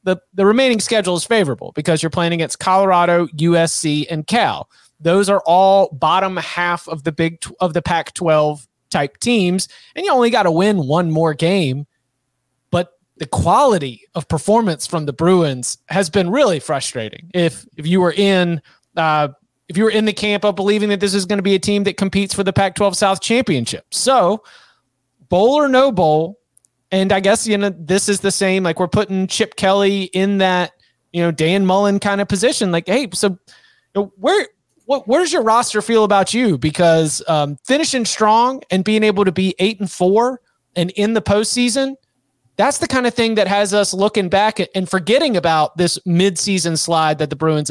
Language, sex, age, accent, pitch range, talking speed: English, male, 30-49, American, 170-210 Hz, 190 wpm